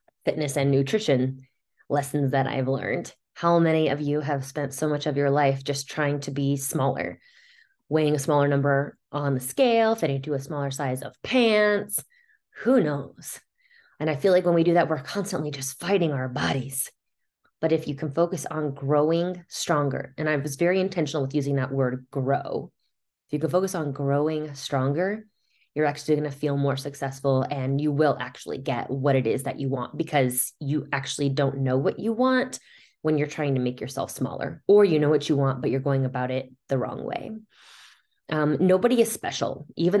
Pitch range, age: 135-165 Hz, 20-39